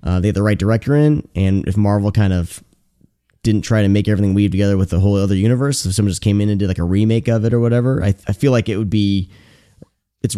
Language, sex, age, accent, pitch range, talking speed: English, male, 20-39, American, 95-125 Hz, 270 wpm